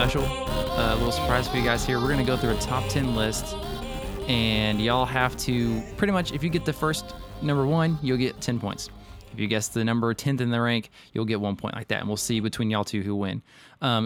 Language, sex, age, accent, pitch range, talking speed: English, male, 20-39, American, 110-135 Hz, 245 wpm